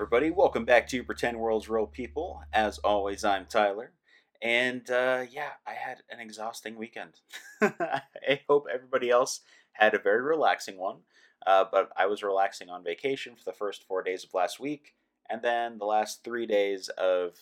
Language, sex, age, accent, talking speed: English, male, 30-49, American, 170 wpm